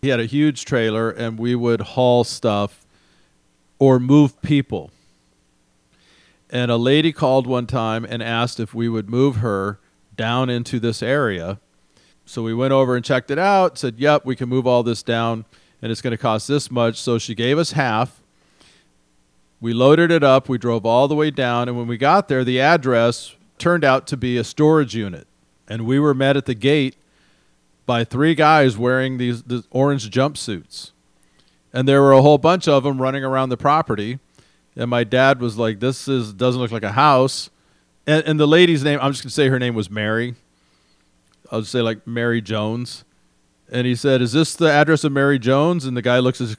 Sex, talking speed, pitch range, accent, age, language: male, 200 wpm, 110-135 Hz, American, 40-59, English